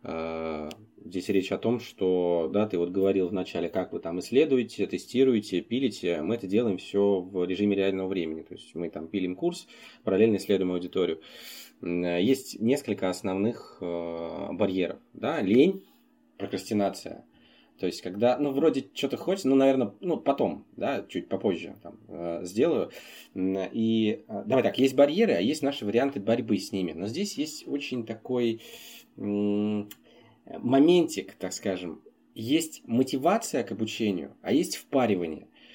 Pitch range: 95-135 Hz